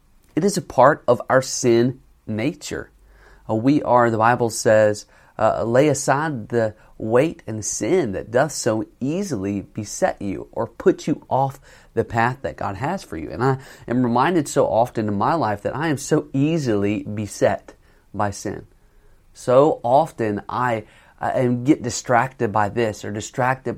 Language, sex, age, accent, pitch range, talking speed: English, male, 30-49, American, 105-135 Hz, 160 wpm